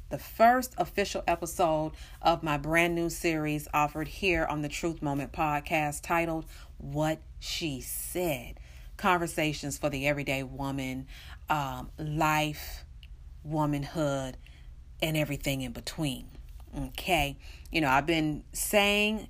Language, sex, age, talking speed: English, female, 40-59, 120 wpm